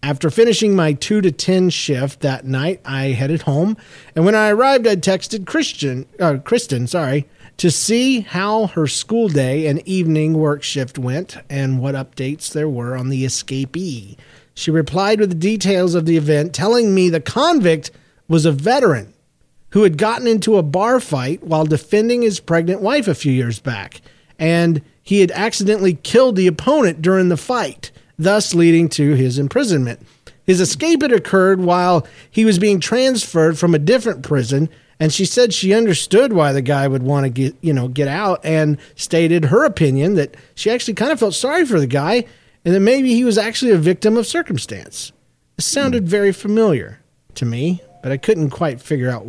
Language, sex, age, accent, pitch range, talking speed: English, male, 40-59, American, 140-200 Hz, 185 wpm